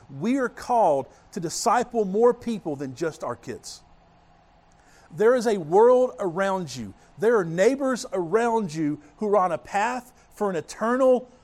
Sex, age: male, 50-69